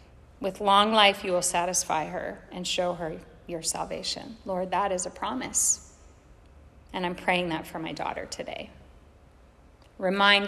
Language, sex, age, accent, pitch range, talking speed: English, female, 40-59, American, 165-215 Hz, 150 wpm